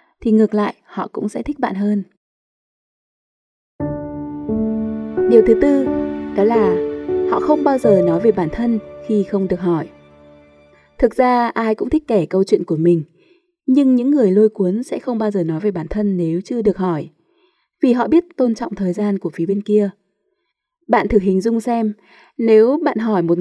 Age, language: 20-39, Vietnamese